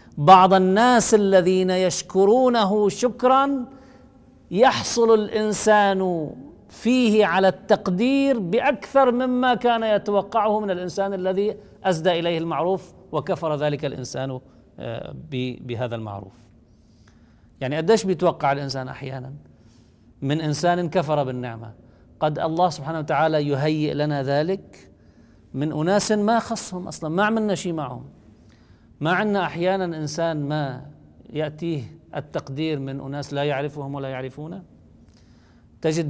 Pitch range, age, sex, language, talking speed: 140-190 Hz, 50-69, male, Arabic, 110 wpm